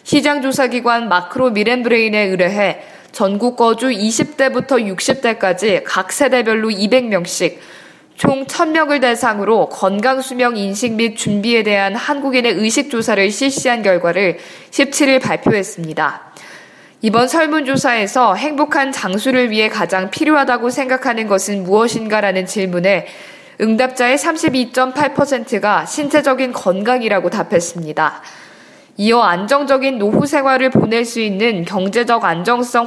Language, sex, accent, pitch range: Korean, female, native, 205-265 Hz